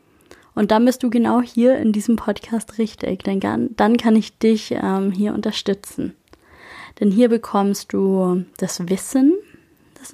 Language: German